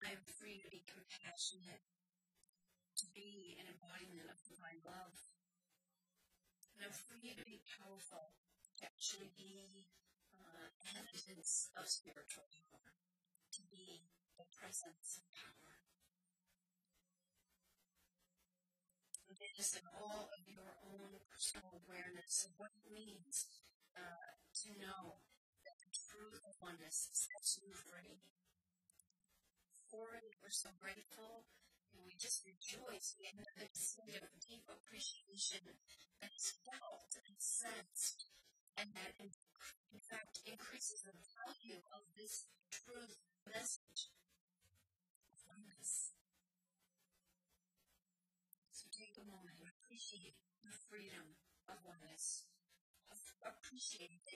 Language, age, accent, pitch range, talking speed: English, 30-49, American, 180-205 Hz, 115 wpm